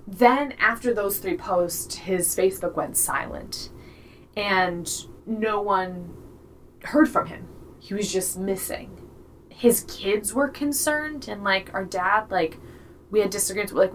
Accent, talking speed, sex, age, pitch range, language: American, 140 wpm, female, 20-39, 160-210 Hz, English